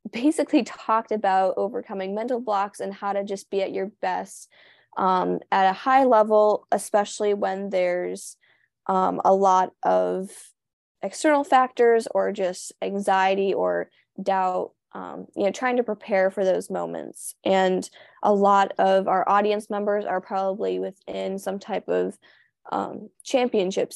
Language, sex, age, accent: English, female, 10-29, American